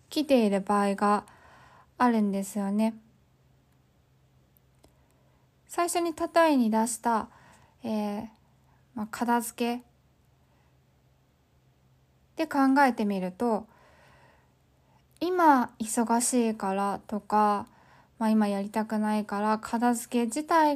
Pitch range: 215-260 Hz